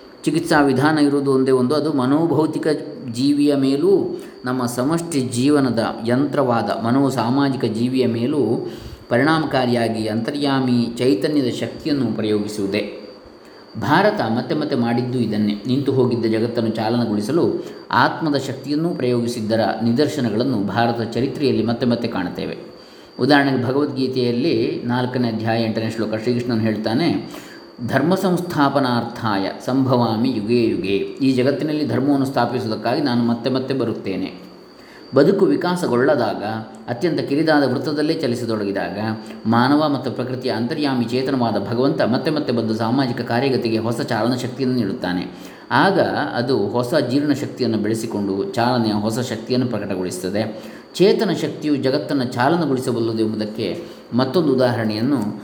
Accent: native